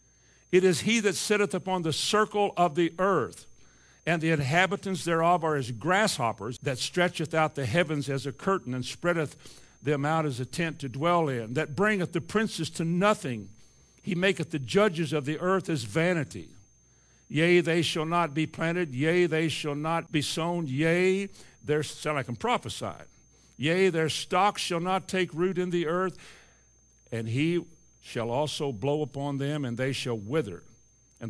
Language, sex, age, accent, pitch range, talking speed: English, male, 60-79, American, 125-175 Hz, 175 wpm